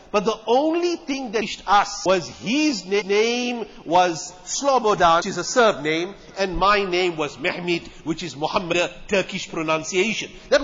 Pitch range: 205-260 Hz